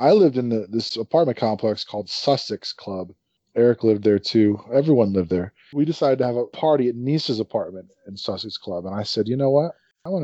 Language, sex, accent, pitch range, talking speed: English, male, American, 105-135 Hz, 215 wpm